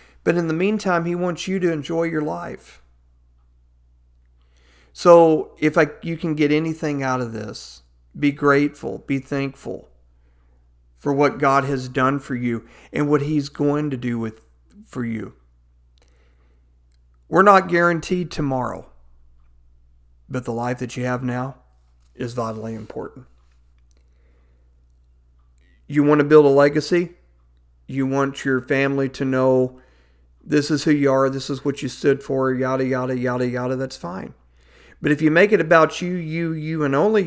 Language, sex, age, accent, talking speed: English, male, 40-59, American, 155 wpm